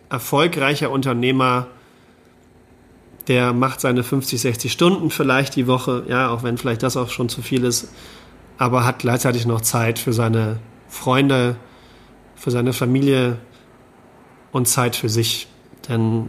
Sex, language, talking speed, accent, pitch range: male, German, 135 wpm, German, 125-140 Hz